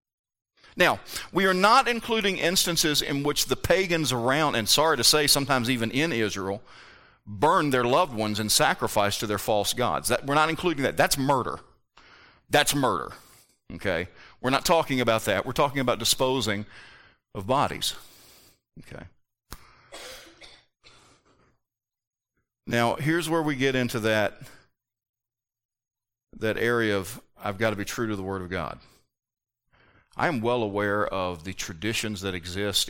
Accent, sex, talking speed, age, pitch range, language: American, male, 145 wpm, 40-59, 100-125 Hz, English